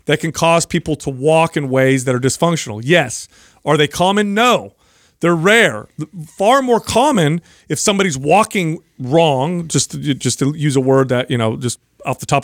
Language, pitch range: English, 130-175 Hz